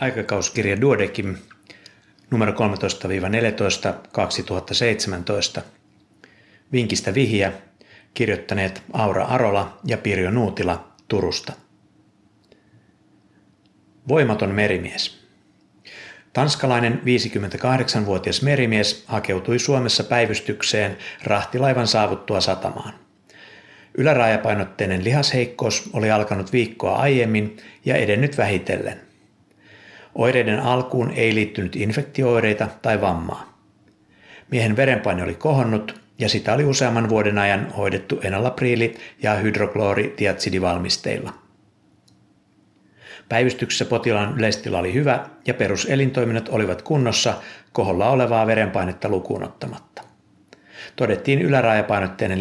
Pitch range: 100-120 Hz